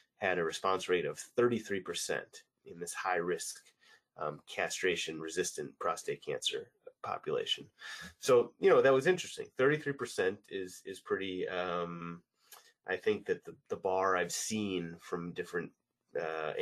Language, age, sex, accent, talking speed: English, 30-49, male, American, 135 wpm